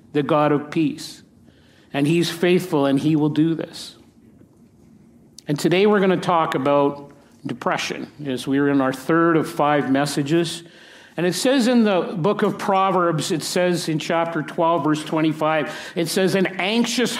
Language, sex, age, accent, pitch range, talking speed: English, male, 50-69, American, 150-185 Hz, 165 wpm